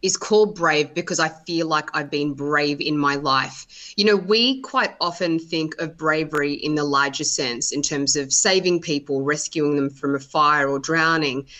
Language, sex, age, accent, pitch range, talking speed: English, female, 20-39, Australian, 165-215 Hz, 190 wpm